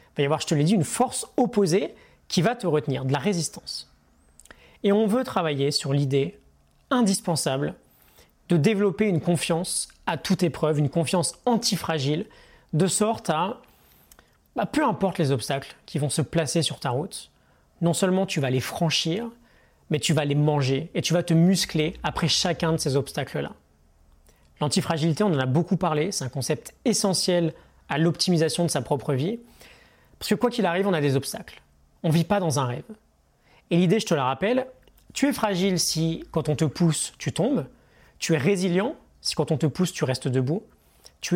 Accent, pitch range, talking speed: French, 145-195 Hz, 190 wpm